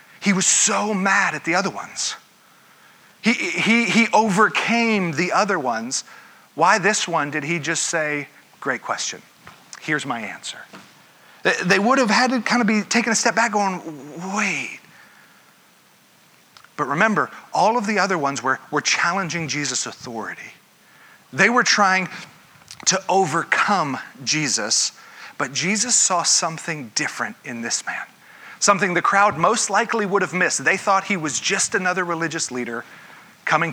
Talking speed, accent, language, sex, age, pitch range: 150 wpm, American, English, male, 40-59, 155-205 Hz